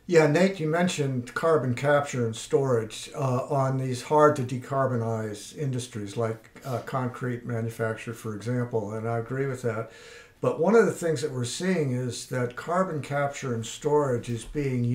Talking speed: 160 wpm